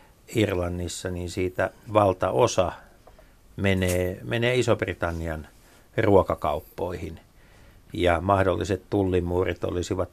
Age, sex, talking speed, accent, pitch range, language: 60-79, male, 70 wpm, native, 100-140 Hz, Finnish